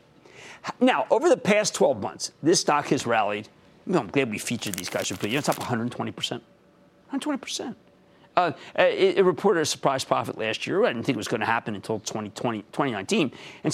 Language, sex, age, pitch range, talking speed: English, male, 50-69, 120-170 Hz, 190 wpm